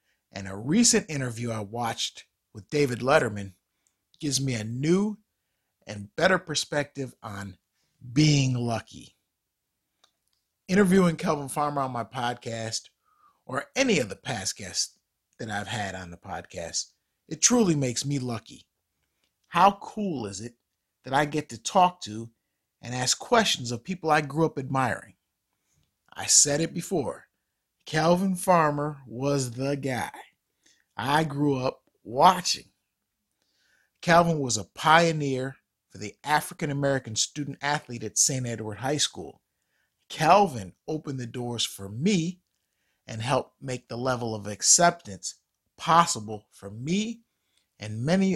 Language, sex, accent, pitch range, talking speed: English, male, American, 110-160 Hz, 130 wpm